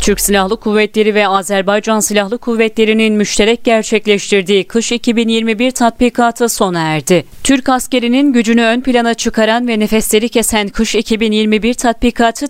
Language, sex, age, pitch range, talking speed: Turkish, female, 30-49, 200-240 Hz, 125 wpm